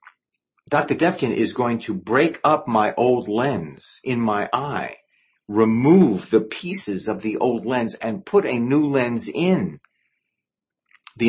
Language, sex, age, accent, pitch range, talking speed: English, male, 50-69, American, 105-160 Hz, 145 wpm